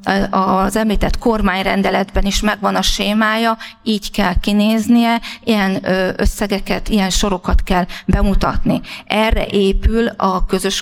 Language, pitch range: Hungarian, 195-220 Hz